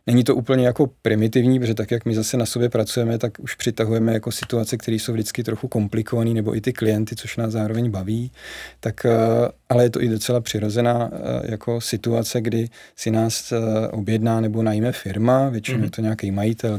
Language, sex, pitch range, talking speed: Czech, male, 110-120 Hz, 185 wpm